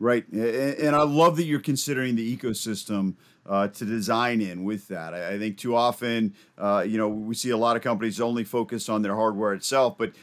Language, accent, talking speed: English, American, 205 wpm